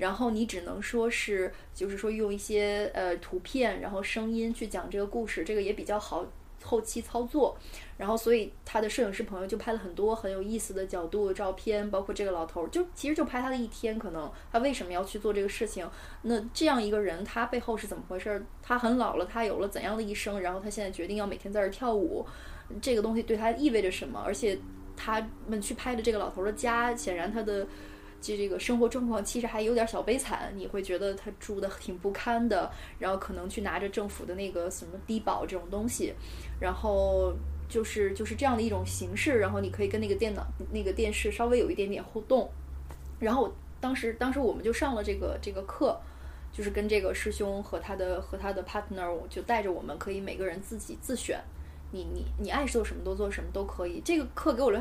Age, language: 20-39, Chinese